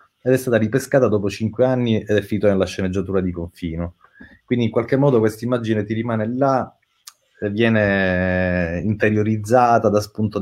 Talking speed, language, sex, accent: 155 wpm, Italian, male, native